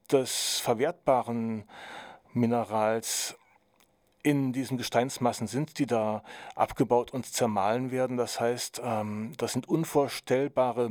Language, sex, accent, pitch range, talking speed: German, male, German, 120-135 Hz, 100 wpm